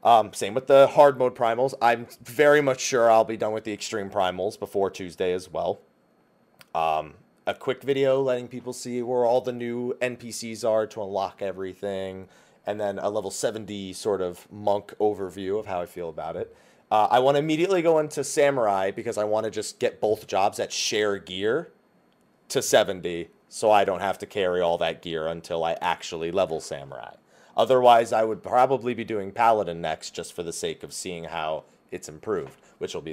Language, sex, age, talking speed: English, male, 30-49, 195 wpm